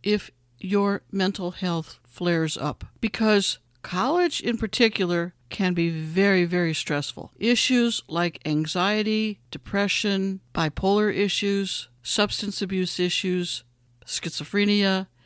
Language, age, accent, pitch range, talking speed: English, 60-79, American, 170-210 Hz, 100 wpm